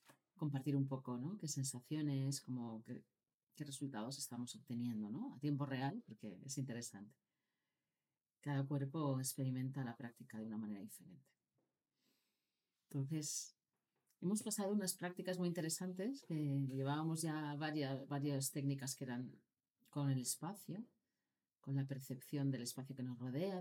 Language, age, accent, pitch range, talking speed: Spanish, 40-59, Spanish, 125-155 Hz, 135 wpm